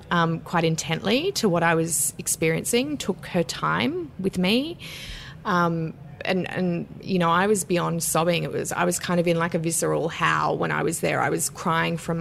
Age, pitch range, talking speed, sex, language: 20-39, 160-185 Hz, 200 wpm, female, English